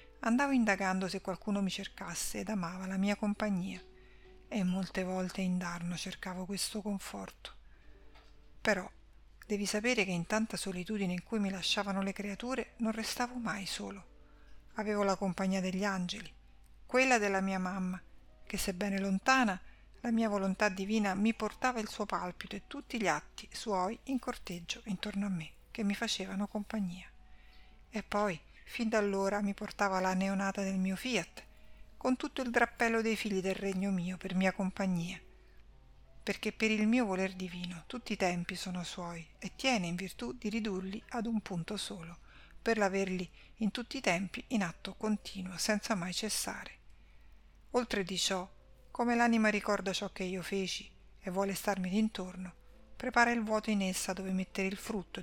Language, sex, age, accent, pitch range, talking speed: Italian, female, 50-69, native, 185-215 Hz, 165 wpm